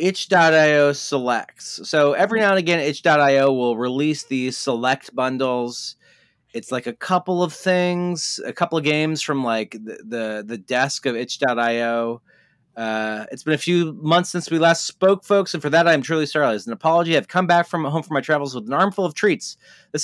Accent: American